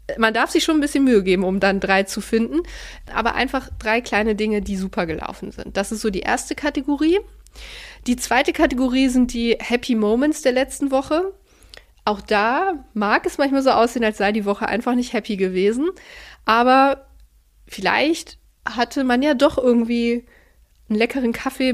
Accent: German